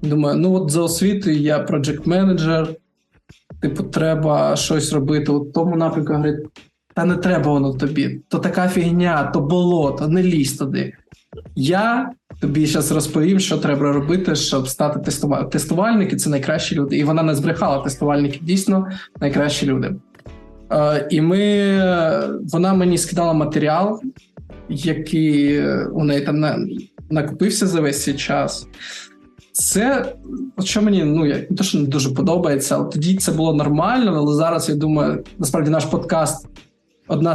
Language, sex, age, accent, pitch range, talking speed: Ukrainian, male, 20-39, native, 150-180 Hz, 140 wpm